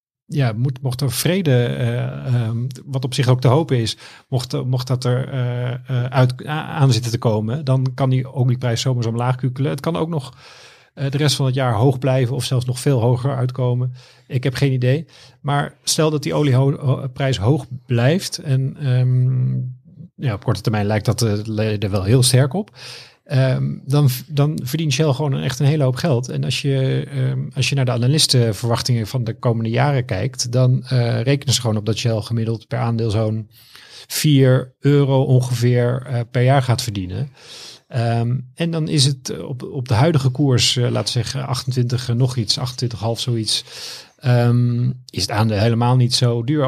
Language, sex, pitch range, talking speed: Dutch, male, 120-140 Hz, 190 wpm